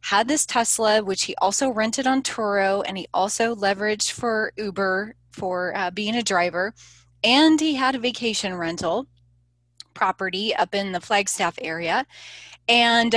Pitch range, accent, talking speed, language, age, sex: 185-245 Hz, American, 150 wpm, English, 20-39, female